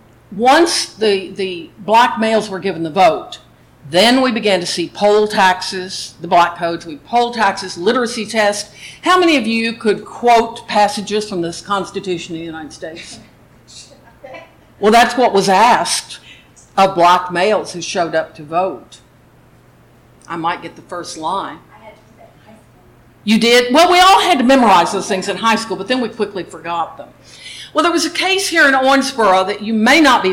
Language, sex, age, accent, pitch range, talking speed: English, female, 60-79, American, 180-245 Hz, 190 wpm